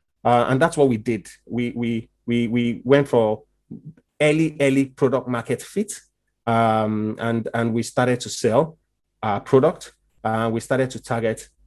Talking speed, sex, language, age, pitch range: 160 wpm, male, English, 30-49, 105-125 Hz